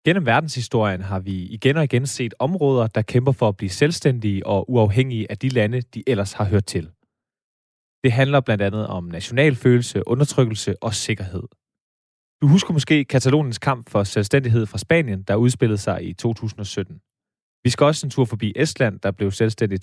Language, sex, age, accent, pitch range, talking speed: Danish, male, 20-39, native, 105-135 Hz, 175 wpm